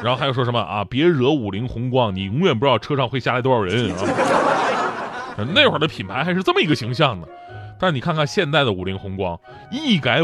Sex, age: male, 30-49